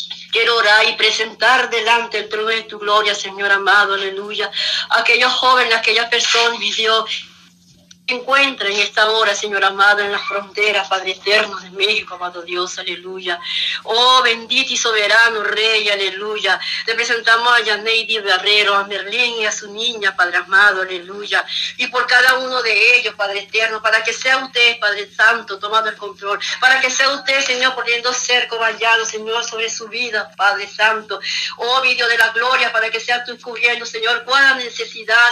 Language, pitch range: Spanish, 210-245 Hz